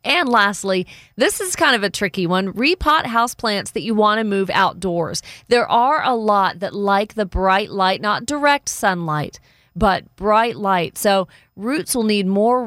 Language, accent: English, American